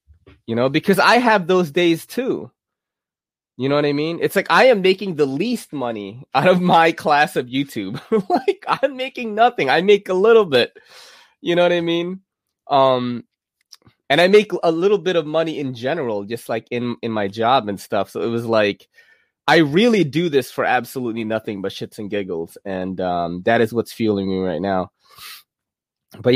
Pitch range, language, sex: 105-165 Hz, English, male